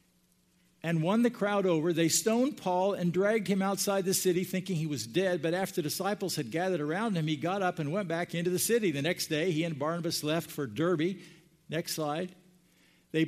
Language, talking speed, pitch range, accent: English, 210 wpm, 155-200 Hz, American